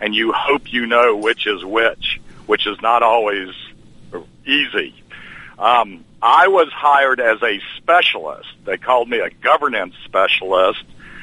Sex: male